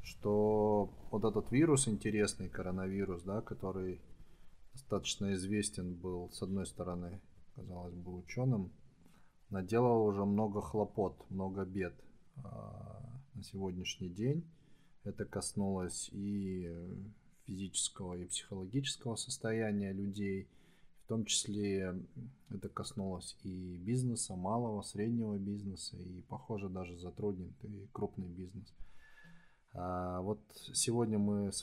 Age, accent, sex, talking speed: 20-39, native, male, 105 wpm